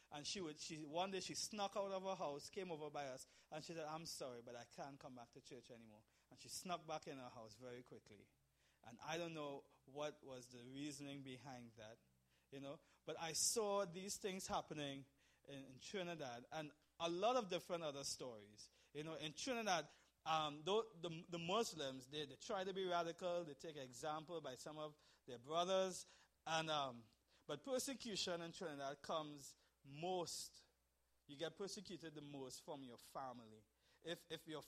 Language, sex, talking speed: English, male, 185 wpm